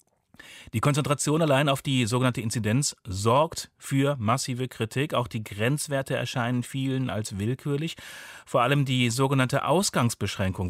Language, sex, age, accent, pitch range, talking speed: German, male, 40-59, German, 100-135 Hz, 130 wpm